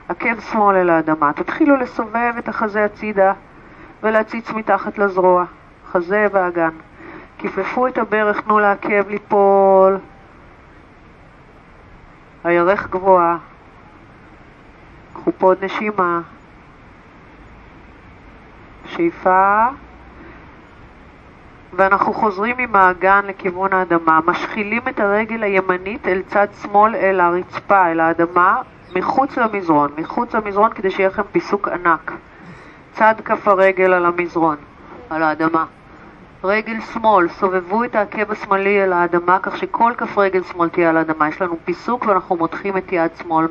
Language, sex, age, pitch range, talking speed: Hebrew, female, 40-59, 170-210 Hz, 115 wpm